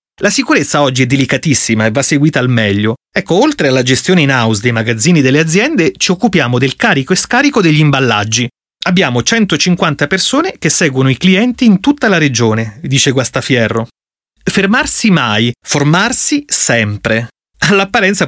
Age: 30-49